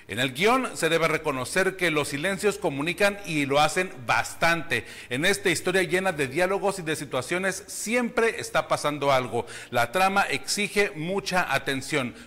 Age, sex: 40-59, male